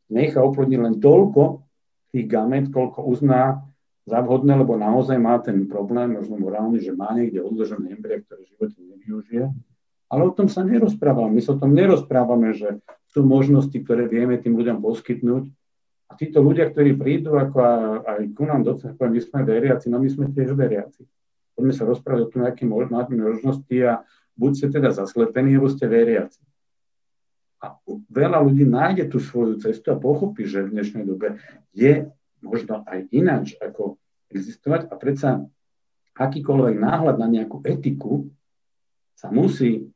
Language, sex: Slovak, male